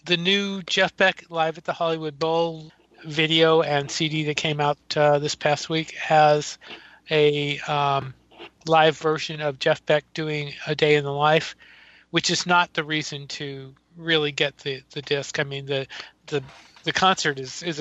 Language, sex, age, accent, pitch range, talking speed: English, male, 40-59, American, 140-155 Hz, 175 wpm